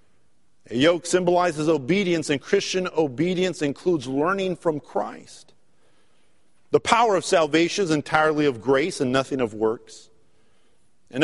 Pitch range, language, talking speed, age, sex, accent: 160-245 Hz, English, 130 wpm, 50-69, male, American